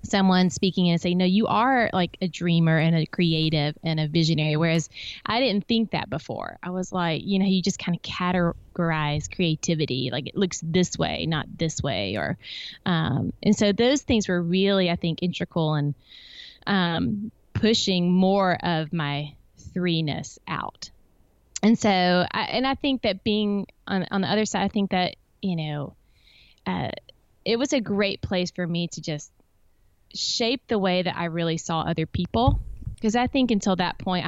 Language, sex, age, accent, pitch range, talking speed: English, female, 20-39, American, 160-195 Hz, 180 wpm